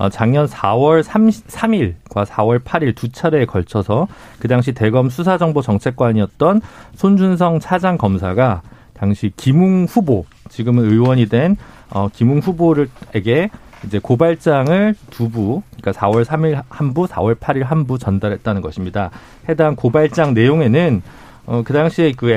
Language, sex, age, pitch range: Korean, male, 40-59, 110-160 Hz